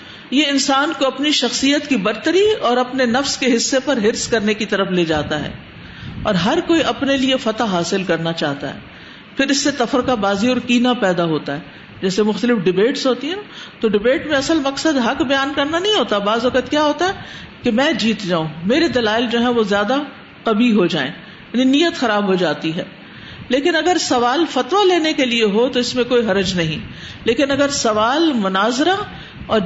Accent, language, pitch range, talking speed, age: Indian, English, 200-275 Hz, 165 wpm, 50-69